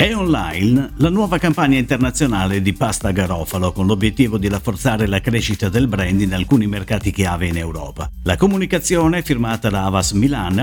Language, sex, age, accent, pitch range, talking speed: Italian, male, 50-69, native, 100-150 Hz, 165 wpm